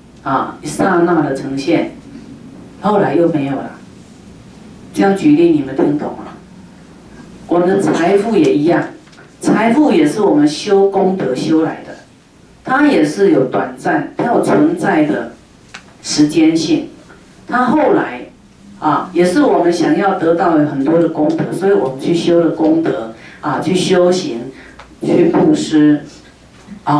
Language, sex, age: Chinese, female, 40-59